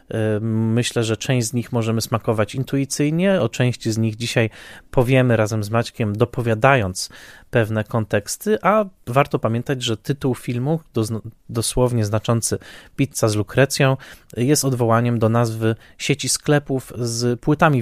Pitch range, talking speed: 110-135 Hz, 130 wpm